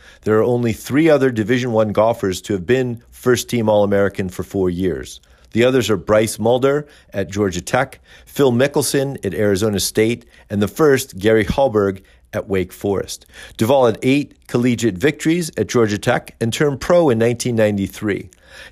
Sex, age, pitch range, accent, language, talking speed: male, 40-59, 105-130 Hz, American, English, 160 wpm